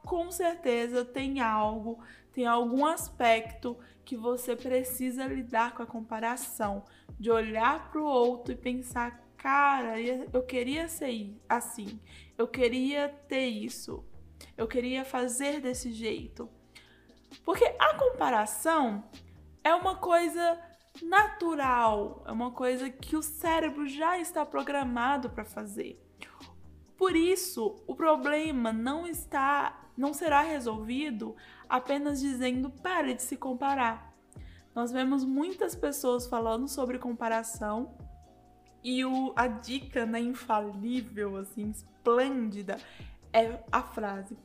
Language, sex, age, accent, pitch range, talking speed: Portuguese, female, 10-29, Brazilian, 230-285 Hz, 115 wpm